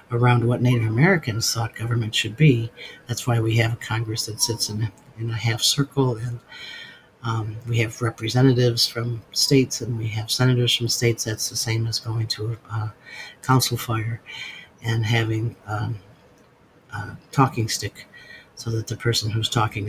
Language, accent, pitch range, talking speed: English, American, 115-135 Hz, 170 wpm